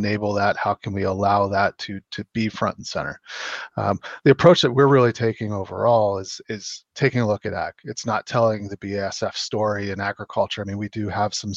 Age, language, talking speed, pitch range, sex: 30-49, English, 220 wpm, 105-125 Hz, male